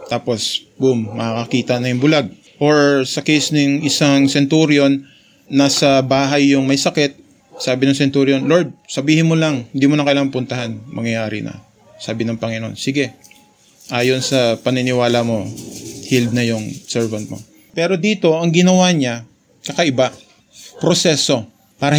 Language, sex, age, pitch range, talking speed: Filipino, male, 20-39, 125-150 Hz, 140 wpm